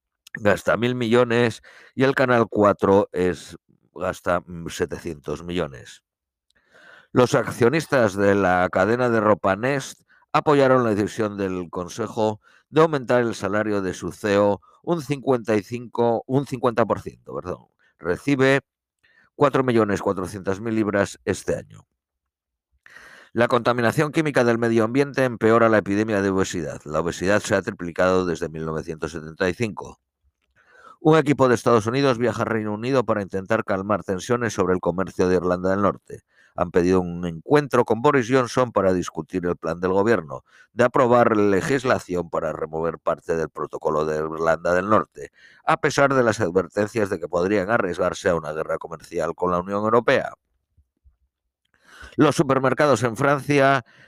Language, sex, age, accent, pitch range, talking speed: Spanish, male, 50-69, Spanish, 90-125 Hz, 140 wpm